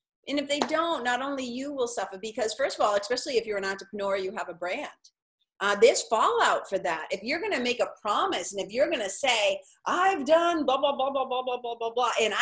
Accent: American